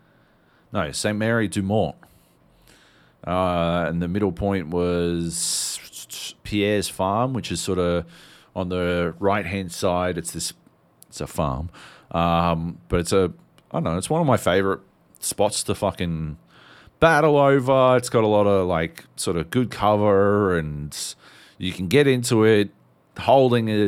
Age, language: 40-59, English